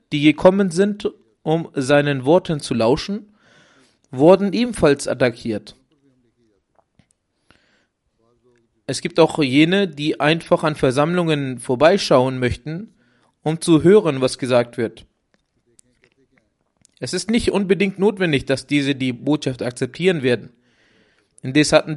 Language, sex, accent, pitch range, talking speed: German, male, German, 130-175 Hz, 110 wpm